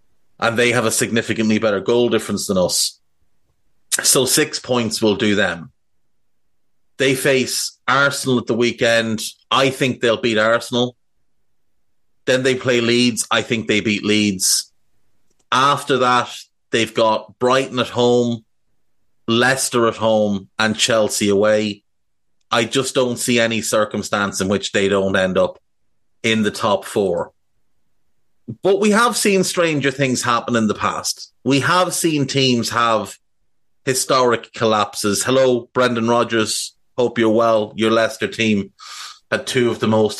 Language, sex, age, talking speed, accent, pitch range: English, male, 30-49, 145 wpm, Irish, 110-130 Hz